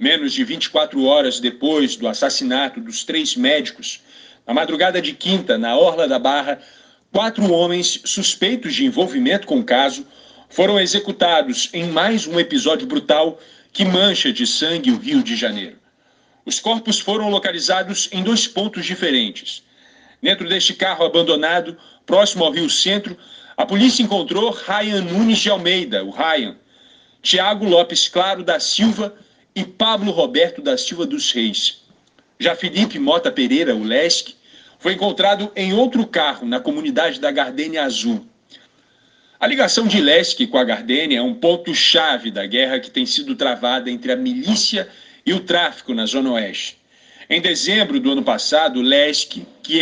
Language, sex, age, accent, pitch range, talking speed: Portuguese, male, 40-59, Brazilian, 185-260 Hz, 150 wpm